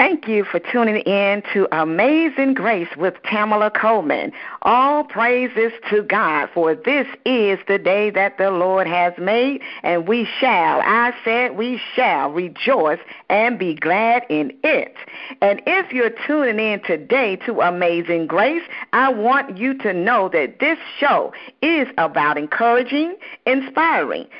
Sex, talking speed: female, 145 wpm